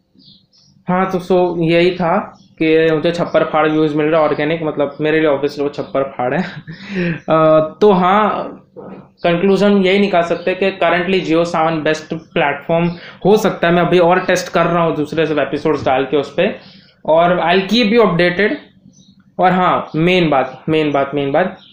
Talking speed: 185 wpm